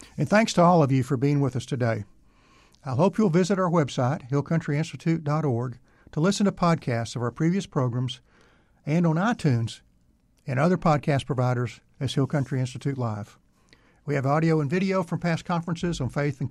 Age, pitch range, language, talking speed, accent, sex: 60-79, 125-165 Hz, English, 180 wpm, American, male